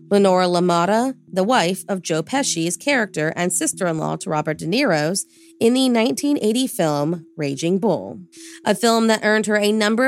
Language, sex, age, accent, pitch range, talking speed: English, female, 30-49, American, 170-235 Hz, 160 wpm